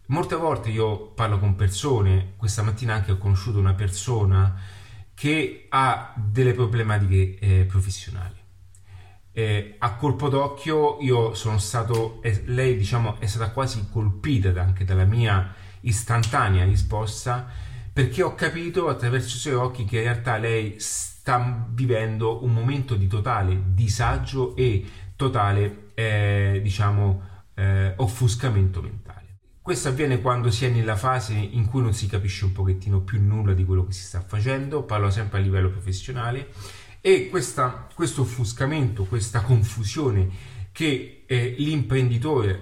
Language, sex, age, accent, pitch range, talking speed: Italian, male, 30-49, native, 100-125 Hz, 140 wpm